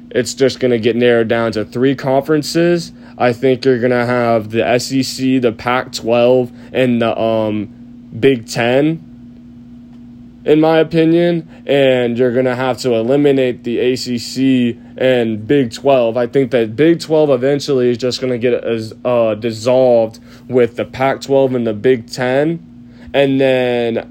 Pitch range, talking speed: 120-130 Hz, 155 wpm